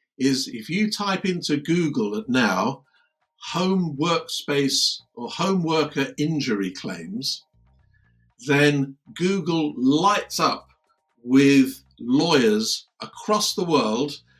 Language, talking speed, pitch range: English, 100 wpm, 135-215 Hz